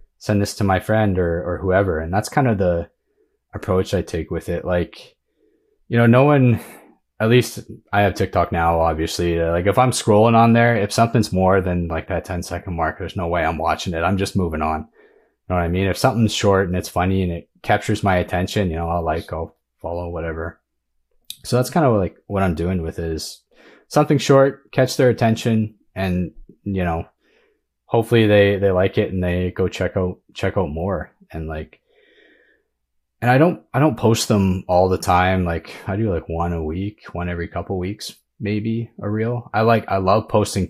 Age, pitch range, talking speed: 20-39, 85-110 Hz, 210 wpm